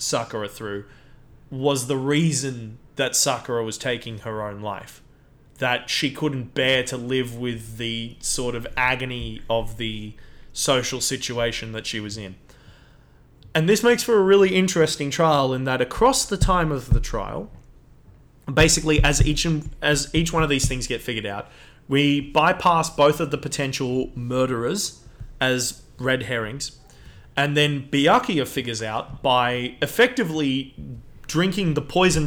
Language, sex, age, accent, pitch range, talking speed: English, male, 20-39, Australian, 120-150 Hz, 145 wpm